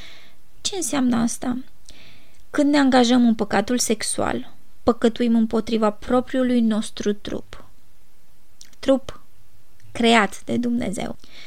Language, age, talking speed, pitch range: Romanian, 20-39, 95 wpm, 225-255 Hz